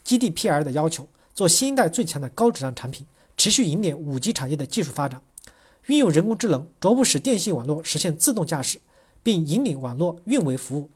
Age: 40-59